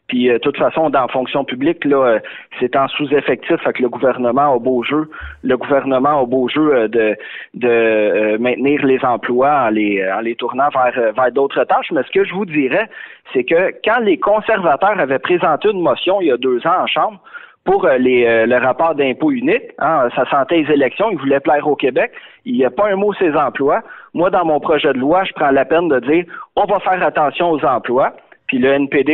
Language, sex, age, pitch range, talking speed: French, male, 30-49, 125-185 Hz, 225 wpm